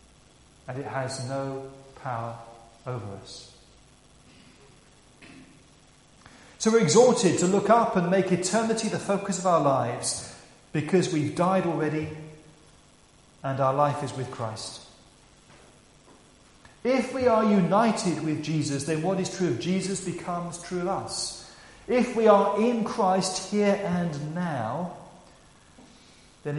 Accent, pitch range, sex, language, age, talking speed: British, 135-175 Hz, male, English, 40-59, 125 wpm